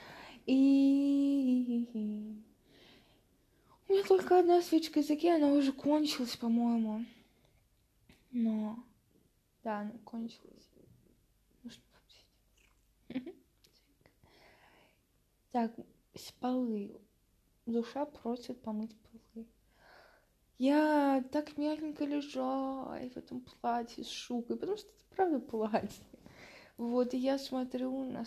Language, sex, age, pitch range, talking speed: Russian, female, 20-39, 225-275 Hz, 90 wpm